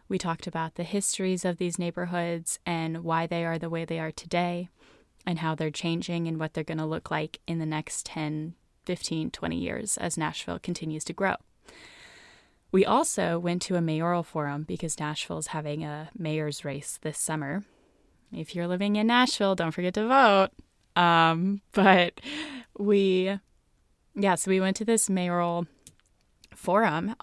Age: 10-29